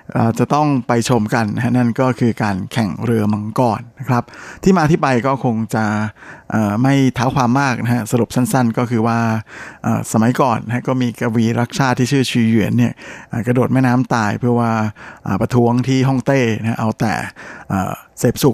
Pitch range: 115-135 Hz